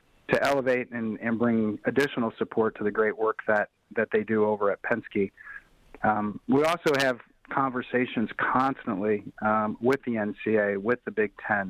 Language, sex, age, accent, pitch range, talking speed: English, male, 40-59, American, 110-120 Hz, 165 wpm